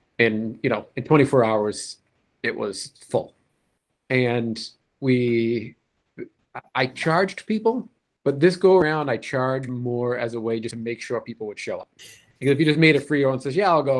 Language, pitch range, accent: English, 115-135 Hz, American